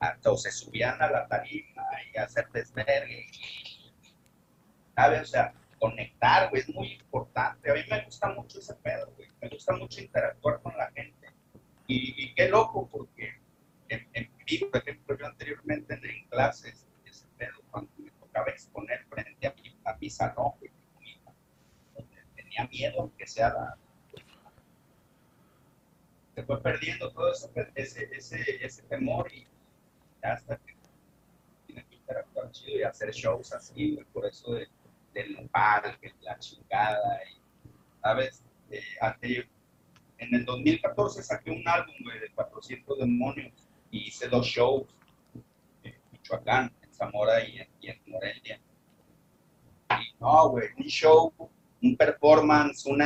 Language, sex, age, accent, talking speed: Spanish, male, 50-69, Mexican, 135 wpm